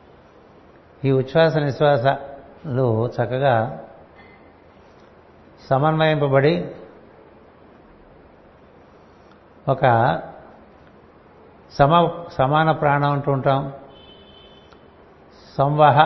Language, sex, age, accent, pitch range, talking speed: Telugu, male, 60-79, native, 90-150 Hz, 45 wpm